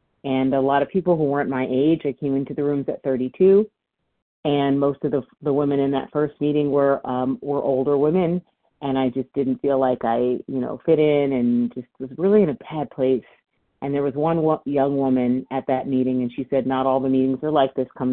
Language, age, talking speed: English, 30-49, 235 wpm